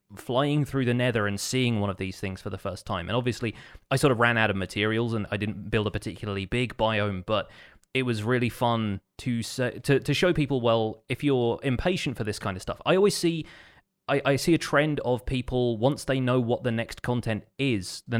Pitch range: 105-135 Hz